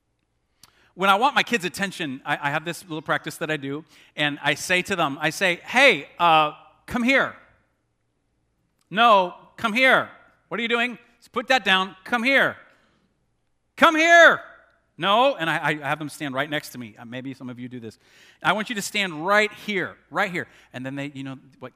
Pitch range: 130-185 Hz